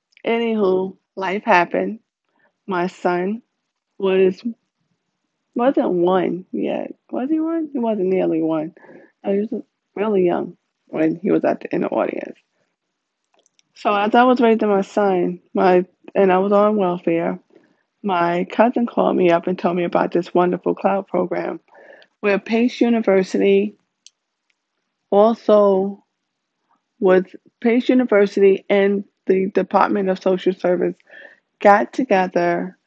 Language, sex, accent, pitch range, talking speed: English, female, American, 180-210 Hz, 125 wpm